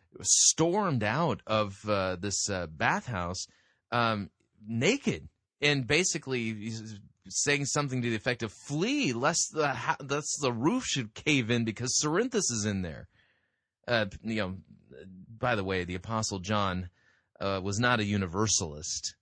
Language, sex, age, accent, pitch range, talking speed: English, male, 30-49, American, 100-120 Hz, 145 wpm